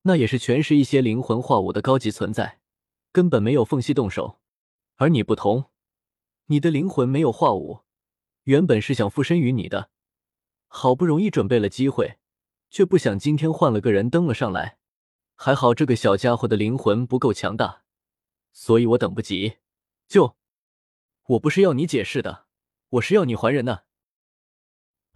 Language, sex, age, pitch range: Chinese, male, 20-39, 110-160 Hz